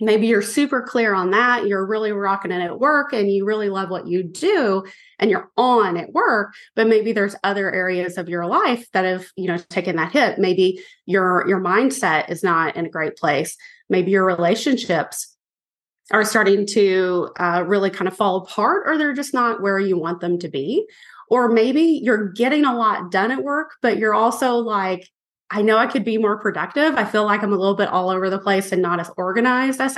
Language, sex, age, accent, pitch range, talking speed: English, female, 30-49, American, 185-240 Hz, 215 wpm